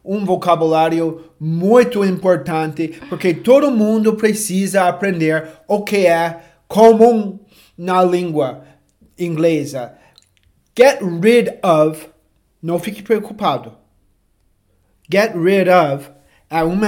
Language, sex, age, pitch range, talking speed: Portuguese, male, 30-49, 155-200 Hz, 95 wpm